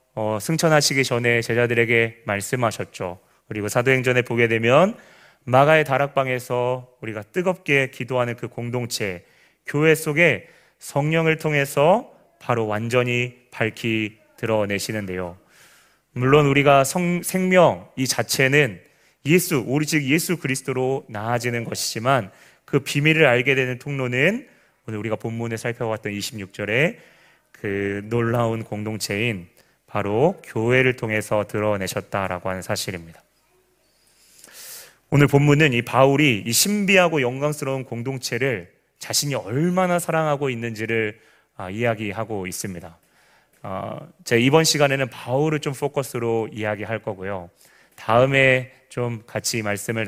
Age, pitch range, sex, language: 30-49, 110-140 Hz, male, Korean